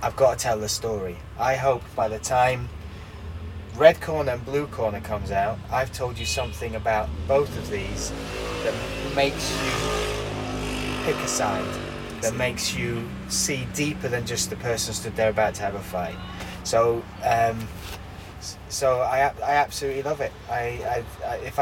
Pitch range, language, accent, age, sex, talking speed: 100-125 Hz, Czech, British, 20-39, male, 165 wpm